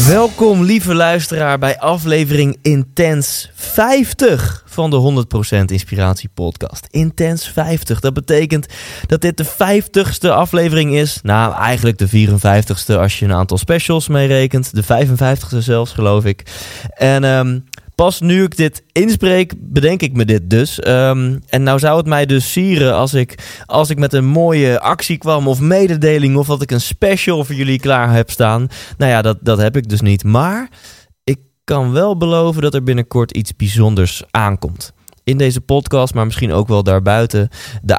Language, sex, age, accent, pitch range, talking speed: Dutch, male, 20-39, Dutch, 105-145 Hz, 165 wpm